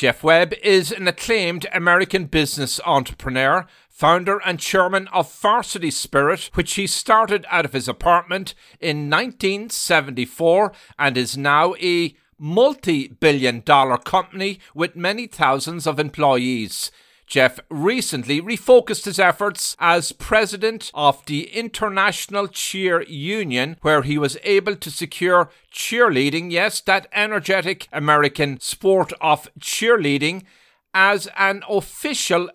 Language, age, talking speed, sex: English, 50-69, 120 wpm, male